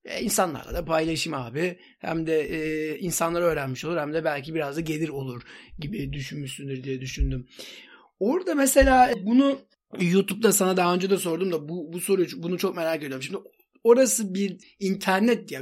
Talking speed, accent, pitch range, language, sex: 165 wpm, native, 155-190 Hz, Turkish, male